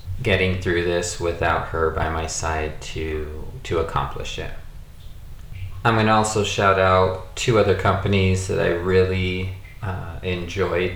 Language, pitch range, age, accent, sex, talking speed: English, 85-100 Hz, 30-49, American, male, 135 wpm